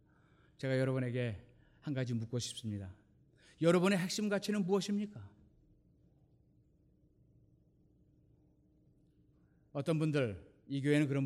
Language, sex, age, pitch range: Korean, male, 40-59, 135-195 Hz